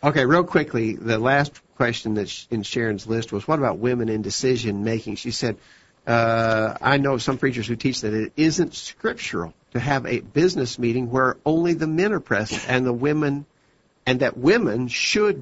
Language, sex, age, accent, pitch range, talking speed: English, male, 50-69, American, 115-140 Hz, 185 wpm